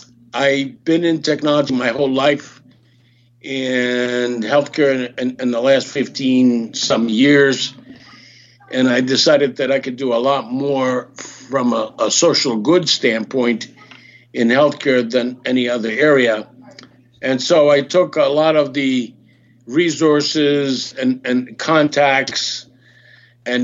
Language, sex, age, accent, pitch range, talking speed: English, male, 60-79, American, 125-150 Hz, 130 wpm